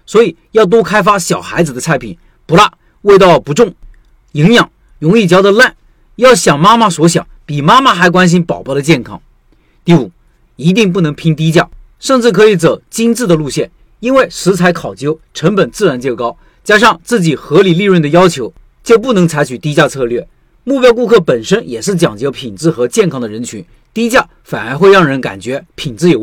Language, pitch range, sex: Chinese, 140-195 Hz, male